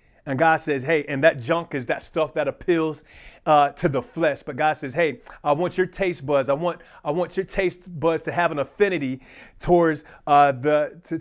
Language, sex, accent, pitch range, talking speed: English, male, American, 150-185 Hz, 215 wpm